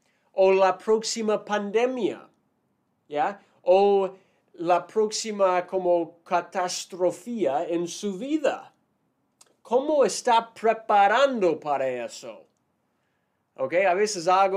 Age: 30-49